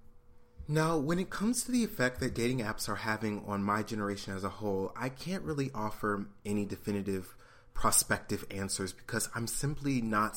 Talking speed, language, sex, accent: 175 wpm, English, male, American